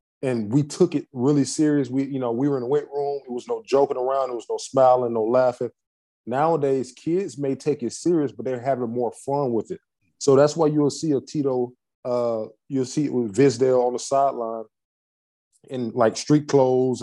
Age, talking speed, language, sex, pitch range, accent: 20-39, 210 wpm, English, male, 120-140 Hz, American